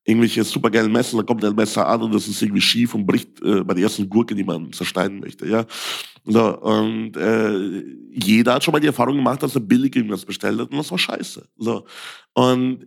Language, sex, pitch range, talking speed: German, male, 115-145 Hz, 220 wpm